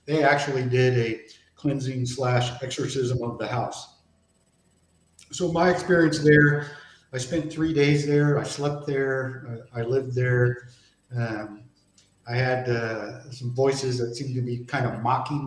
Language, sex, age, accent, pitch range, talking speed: English, male, 50-69, American, 120-140 Hz, 150 wpm